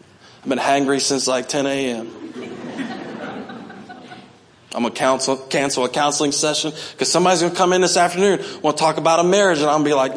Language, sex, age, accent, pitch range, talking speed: English, male, 20-39, American, 130-160 Hz, 200 wpm